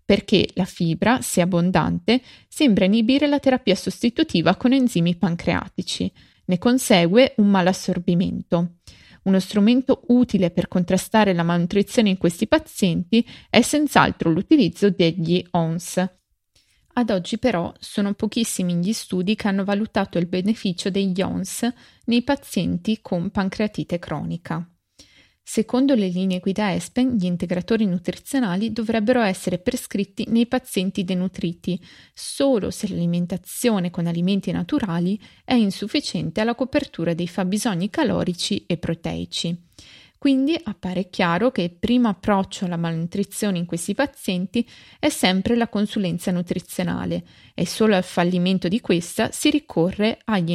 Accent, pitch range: native, 180-230 Hz